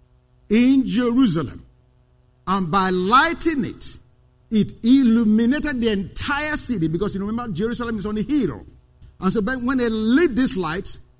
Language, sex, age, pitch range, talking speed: English, male, 50-69, 180-285 Hz, 140 wpm